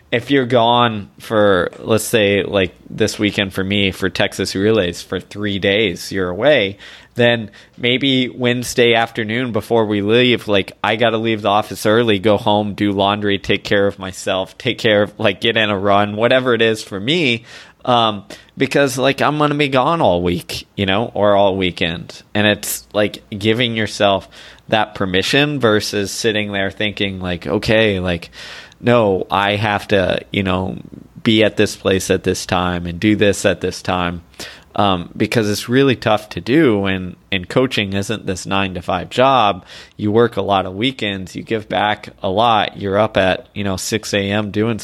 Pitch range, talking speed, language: 95-115 Hz, 185 wpm, English